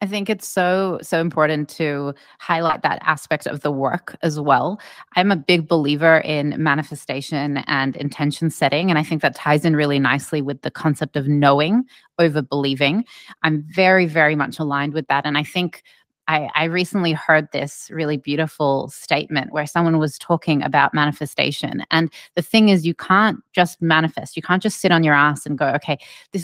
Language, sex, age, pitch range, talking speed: English, female, 20-39, 150-180 Hz, 185 wpm